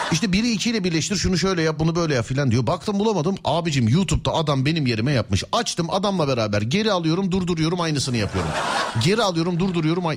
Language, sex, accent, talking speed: Turkish, male, native, 185 wpm